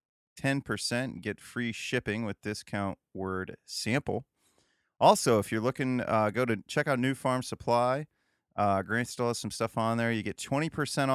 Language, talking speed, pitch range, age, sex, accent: English, 170 wpm, 95-130 Hz, 30-49, male, American